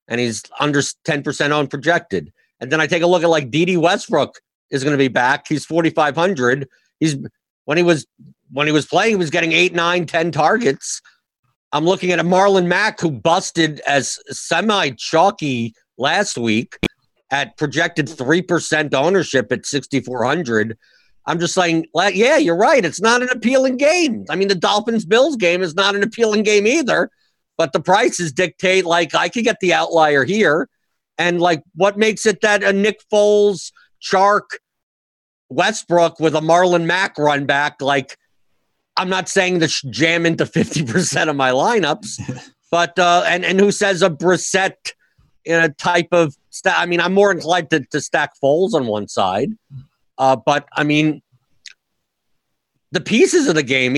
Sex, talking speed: male, 165 wpm